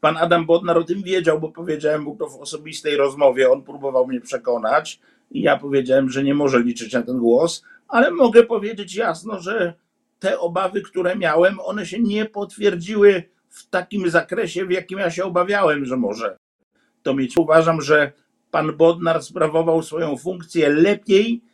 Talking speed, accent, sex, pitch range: 165 wpm, native, male, 155-185 Hz